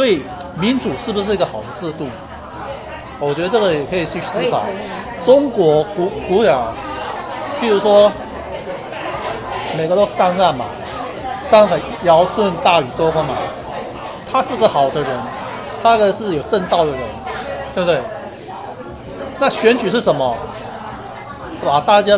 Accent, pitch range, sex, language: native, 165-215 Hz, male, Chinese